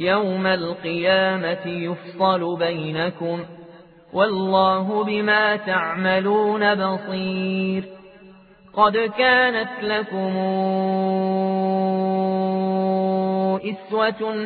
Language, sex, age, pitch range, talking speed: Arabic, male, 30-49, 175-210 Hz, 50 wpm